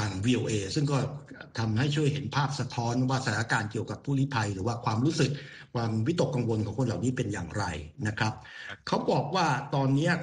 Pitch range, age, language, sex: 115-145 Hz, 60-79, Thai, male